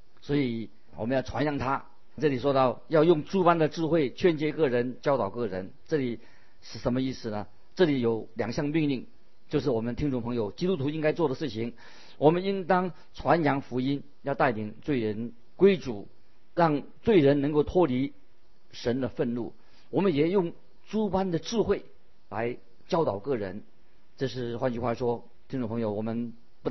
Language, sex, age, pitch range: Chinese, male, 50-69, 120-155 Hz